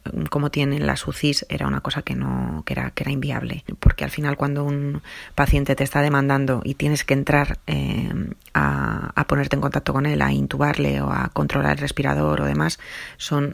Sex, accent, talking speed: female, Spanish, 200 wpm